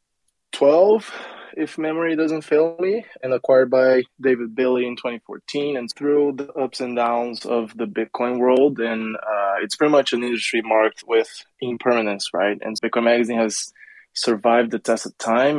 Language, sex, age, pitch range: English, male, 20-39, 115-130 Hz